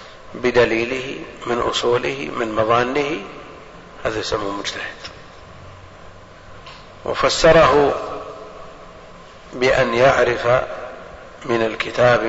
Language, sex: Arabic, male